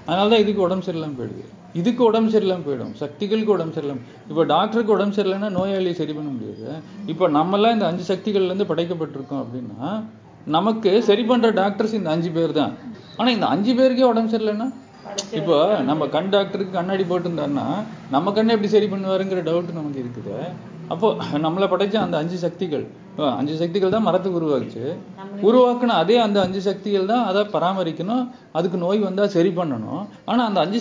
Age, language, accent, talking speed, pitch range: 30-49, Tamil, native, 160 wpm, 165-210 Hz